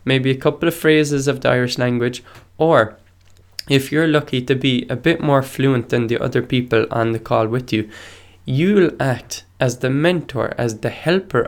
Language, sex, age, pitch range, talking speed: English, male, 20-39, 115-140 Hz, 190 wpm